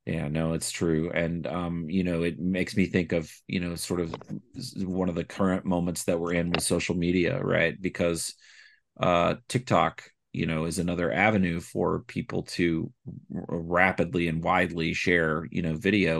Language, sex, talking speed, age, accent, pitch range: English, male, 175 wpm, 30-49, American, 85-100 Hz